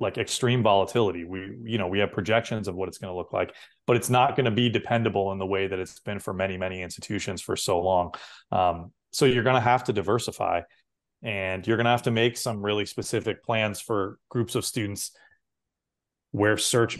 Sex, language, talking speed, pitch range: male, English, 215 wpm, 100-120 Hz